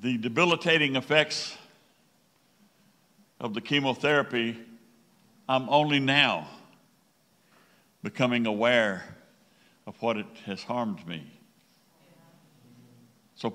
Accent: American